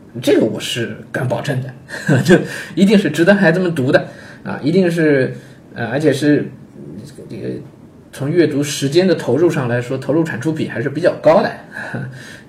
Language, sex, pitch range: Chinese, male, 120-165 Hz